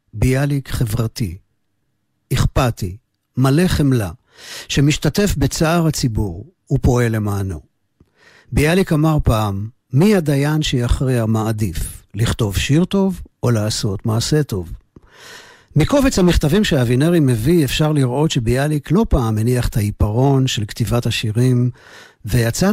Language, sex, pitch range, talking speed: Hebrew, male, 110-145 Hz, 110 wpm